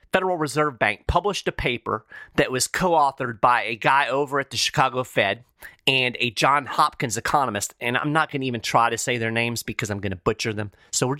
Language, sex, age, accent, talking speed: English, male, 40-59, American, 220 wpm